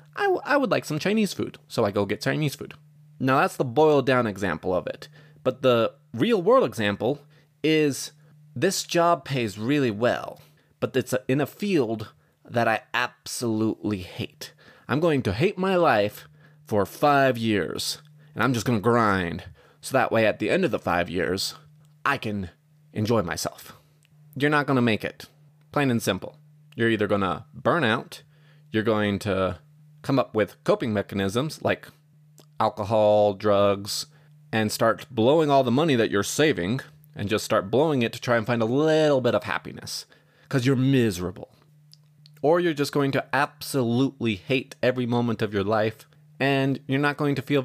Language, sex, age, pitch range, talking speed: English, male, 30-49, 110-150 Hz, 175 wpm